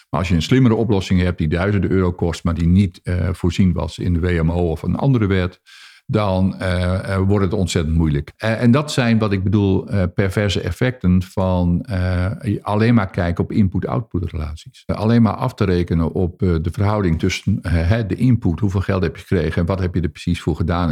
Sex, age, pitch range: male, 50-69, 90-110 Hz